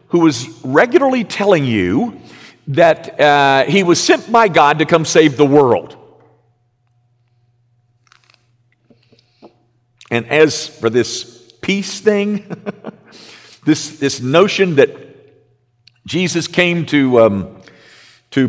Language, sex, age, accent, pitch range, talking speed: English, male, 50-69, American, 130-210 Hz, 105 wpm